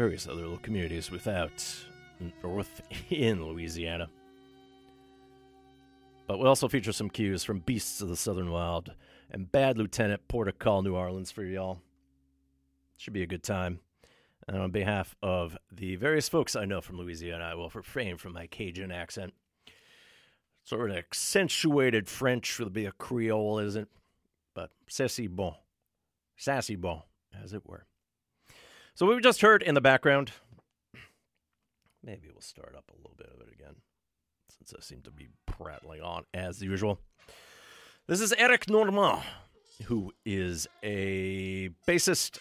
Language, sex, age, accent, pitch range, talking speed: English, male, 40-59, American, 90-145 Hz, 150 wpm